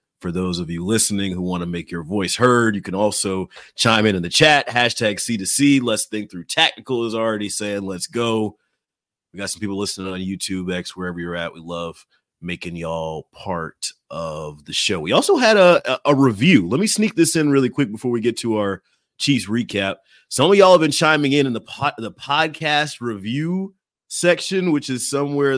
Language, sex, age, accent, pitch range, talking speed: English, male, 30-49, American, 105-145 Hz, 205 wpm